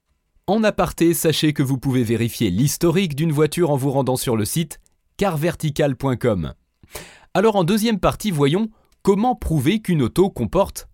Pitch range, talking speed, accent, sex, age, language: 120-185 Hz, 150 wpm, French, male, 30-49, French